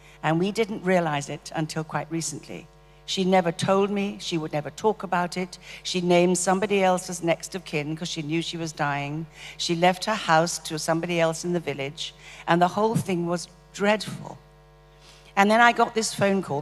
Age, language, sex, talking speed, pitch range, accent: 60-79, English, female, 195 wpm, 150-185 Hz, British